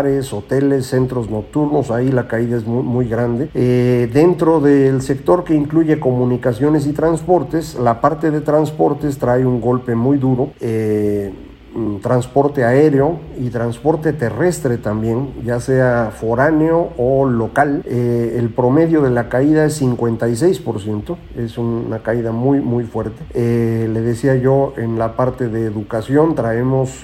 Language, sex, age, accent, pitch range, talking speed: Spanish, male, 50-69, Mexican, 120-150 Hz, 140 wpm